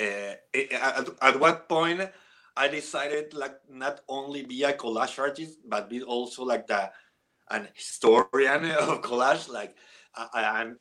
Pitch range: 120-145 Hz